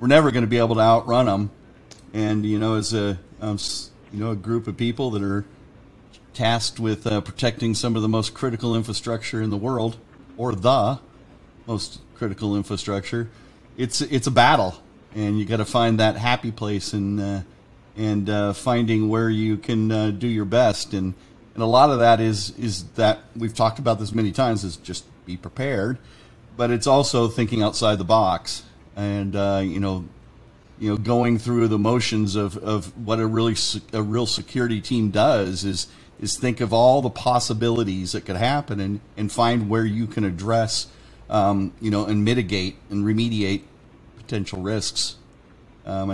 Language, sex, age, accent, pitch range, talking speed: English, male, 40-59, American, 100-120 Hz, 180 wpm